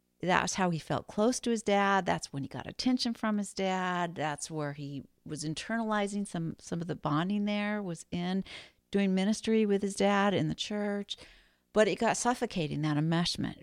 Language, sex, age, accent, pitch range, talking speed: English, female, 50-69, American, 160-200 Hz, 190 wpm